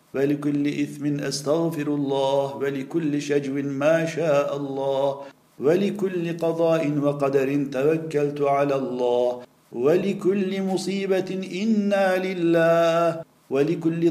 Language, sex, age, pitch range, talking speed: Turkish, male, 50-69, 140-165 Hz, 85 wpm